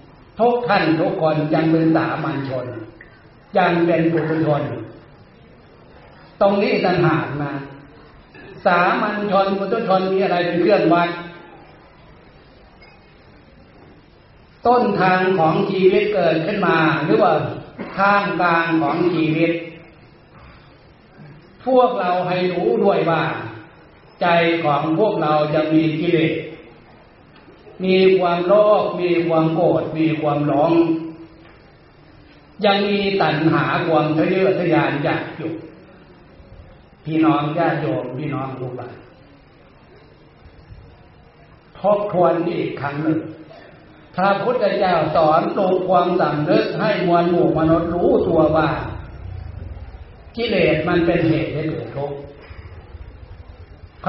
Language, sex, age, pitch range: Thai, male, 60-79, 145-180 Hz